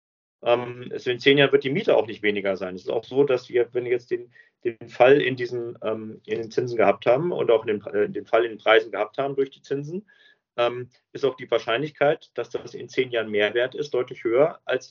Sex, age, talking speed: male, 40-59, 250 wpm